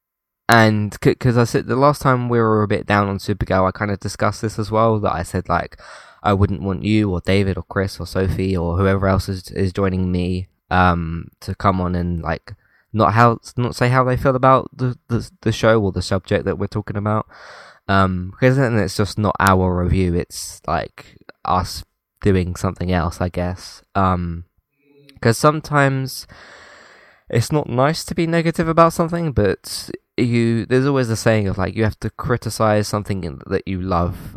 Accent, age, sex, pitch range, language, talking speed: British, 20-39, male, 90-115 Hz, English, 195 wpm